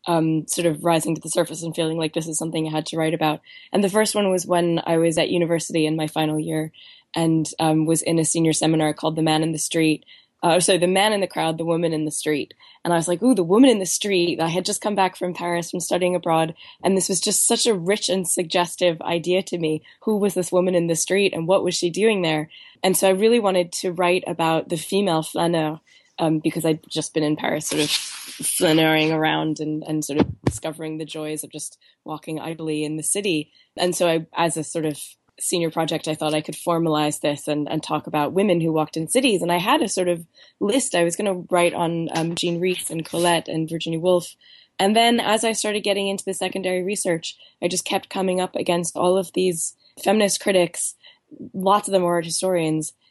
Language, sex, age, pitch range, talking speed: English, female, 20-39, 160-185 Hz, 235 wpm